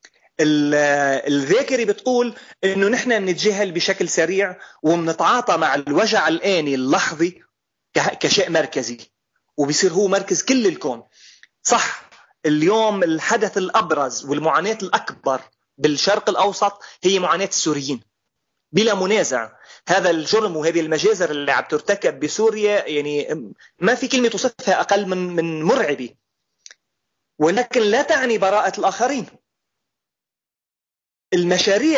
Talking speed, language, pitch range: 105 wpm, Arabic, 160-215 Hz